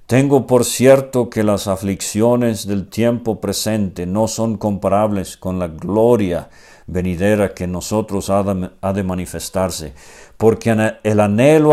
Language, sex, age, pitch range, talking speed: Spanish, male, 50-69, 95-125 Hz, 130 wpm